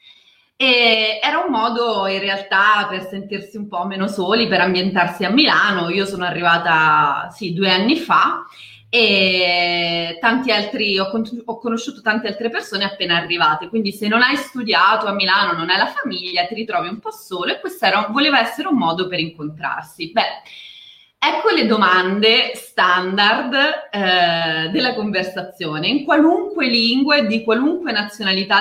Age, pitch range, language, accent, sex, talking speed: 20-39, 185-250 Hz, Italian, native, female, 150 wpm